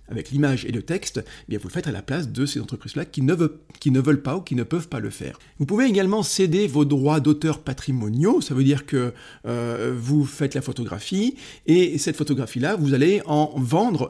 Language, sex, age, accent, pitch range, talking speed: French, male, 40-59, French, 130-155 Hz, 230 wpm